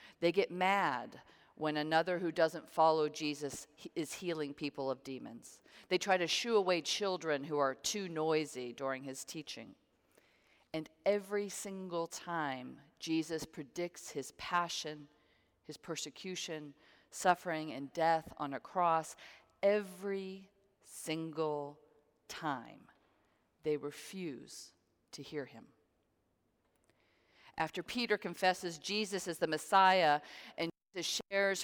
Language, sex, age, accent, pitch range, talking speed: English, female, 40-59, American, 145-185 Hz, 115 wpm